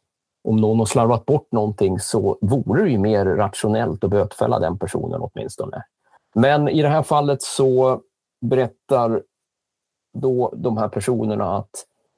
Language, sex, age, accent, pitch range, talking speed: Swedish, male, 30-49, native, 110-130 Hz, 145 wpm